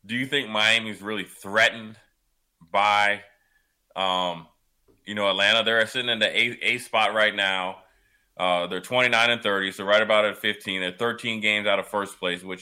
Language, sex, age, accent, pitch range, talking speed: English, male, 20-39, American, 95-110 Hz, 195 wpm